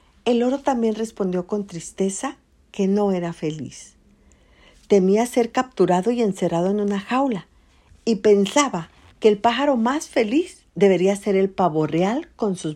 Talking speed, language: 150 wpm, Spanish